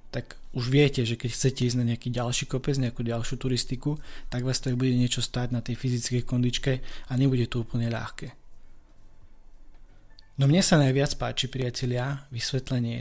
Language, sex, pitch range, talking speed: Slovak, male, 115-135 Hz, 165 wpm